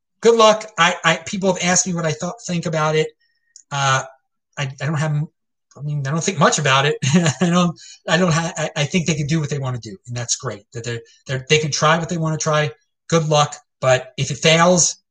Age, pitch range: 30-49, 150-210 Hz